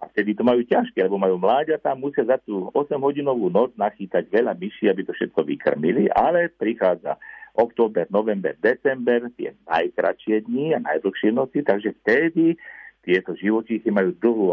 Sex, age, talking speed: male, 60-79, 155 wpm